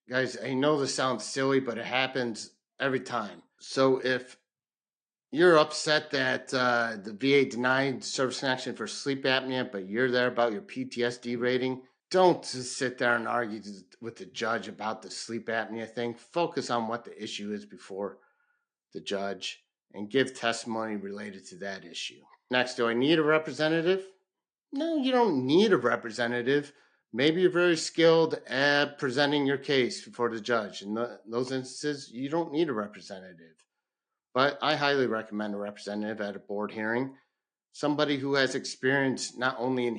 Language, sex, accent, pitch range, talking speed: English, male, American, 115-135 Hz, 165 wpm